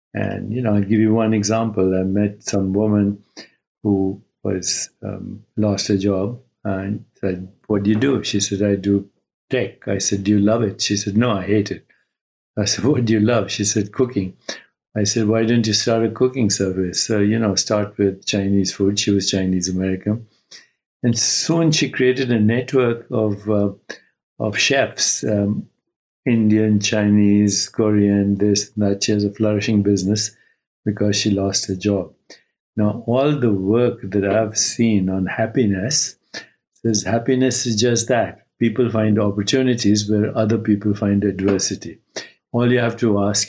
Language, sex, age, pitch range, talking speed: English, male, 60-79, 100-115 Hz, 170 wpm